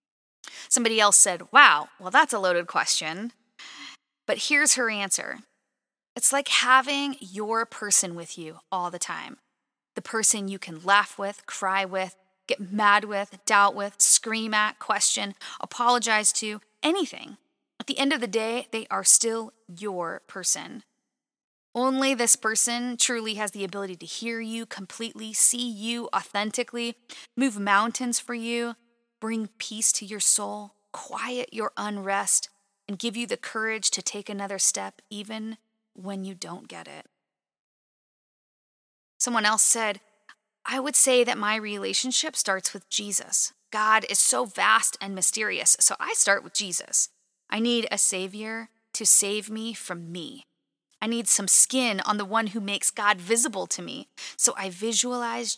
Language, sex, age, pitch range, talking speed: English, female, 20-39, 200-235 Hz, 155 wpm